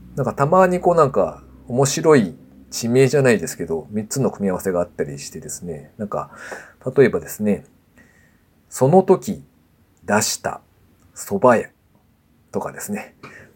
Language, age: Japanese, 40-59